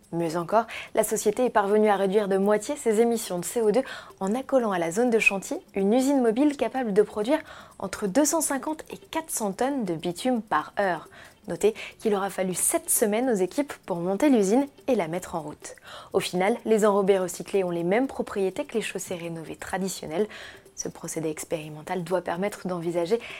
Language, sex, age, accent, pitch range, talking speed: French, female, 20-39, French, 185-245 Hz, 185 wpm